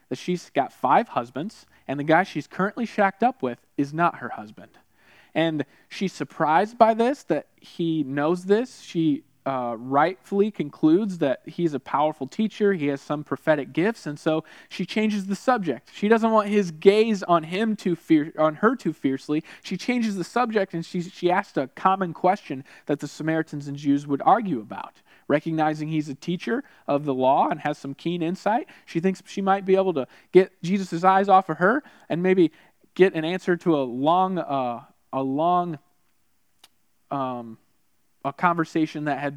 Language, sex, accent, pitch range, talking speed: English, male, American, 145-195 Hz, 180 wpm